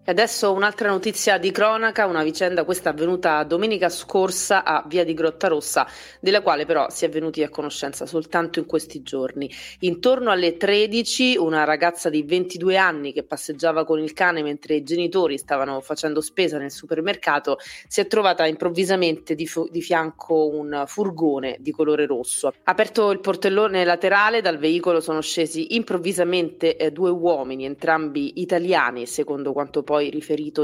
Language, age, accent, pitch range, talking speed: Italian, 30-49, native, 150-180 Hz, 125 wpm